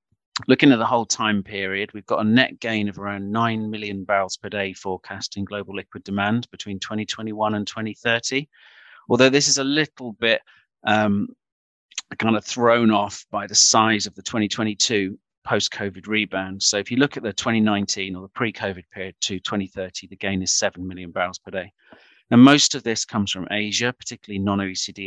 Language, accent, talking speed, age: English, British, 180 wpm, 40-59